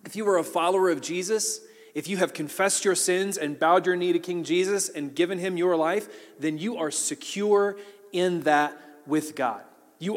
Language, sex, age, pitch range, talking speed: English, male, 30-49, 165-225 Hz, 200 wpm